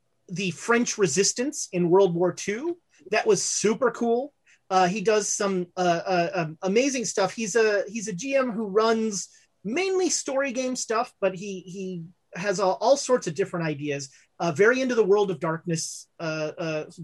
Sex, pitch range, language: male, 175-225 Hz, English